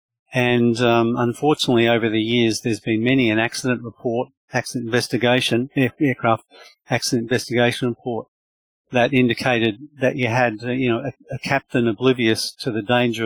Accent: Australian